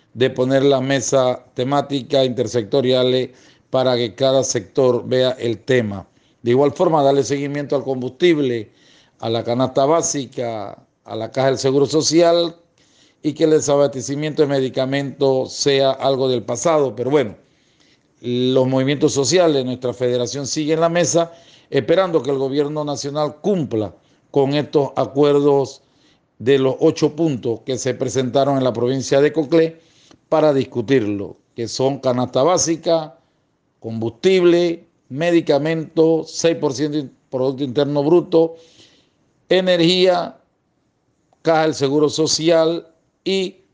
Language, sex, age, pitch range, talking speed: Spanish, male, 50-69, 130-160 Hz, 125 wpm